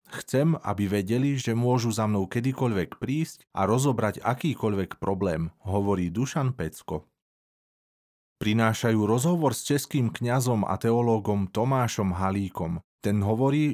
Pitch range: 100-125 Hz